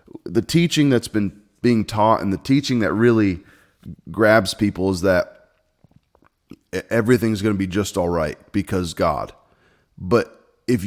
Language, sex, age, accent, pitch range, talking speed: English, male, 30-49, American, 90-110 Hz, 145 wpm